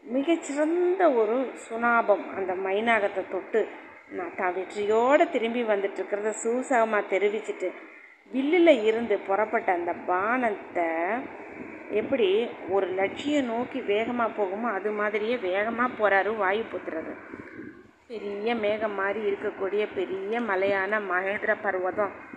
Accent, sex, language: native, female, Tamil